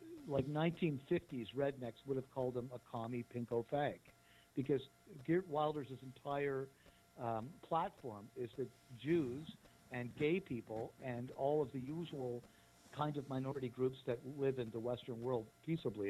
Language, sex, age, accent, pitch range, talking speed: English, male, 60-79, American, 120-150 Hz, 145 wpm